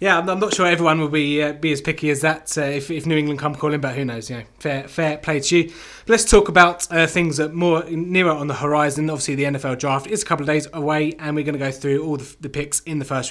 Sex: male